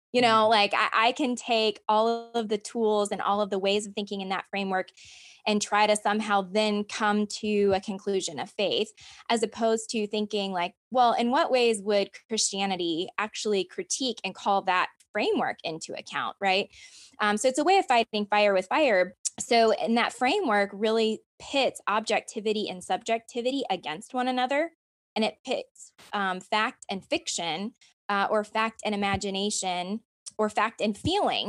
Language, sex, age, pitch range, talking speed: English, female, 20-39, 195-230 Hz, 170 wpm